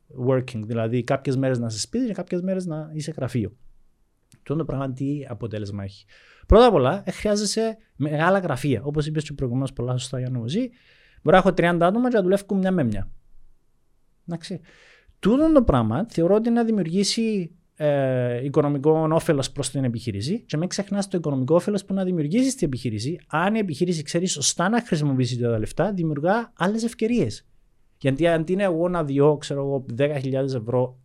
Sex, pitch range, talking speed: male, 125-190 Hz, 170 wpm